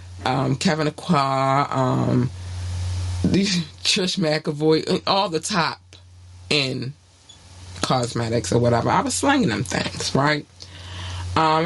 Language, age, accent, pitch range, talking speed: English, 20-39, American, 115-160 Hz, 110 wpm